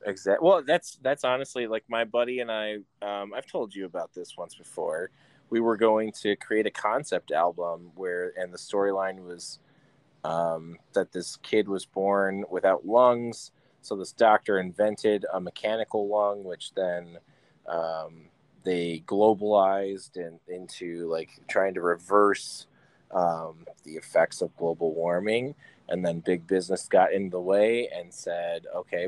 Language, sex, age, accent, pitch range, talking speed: English, male, 20-39, American, 90-110 Hz, 155 wpm